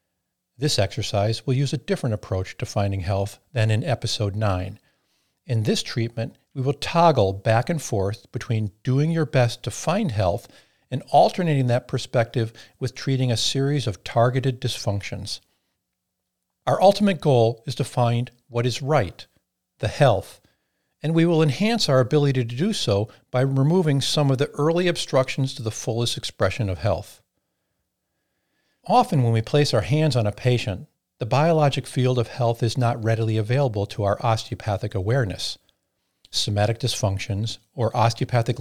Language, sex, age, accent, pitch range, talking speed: English, male, 50-69, American, 105-140 Hz, 155 wpm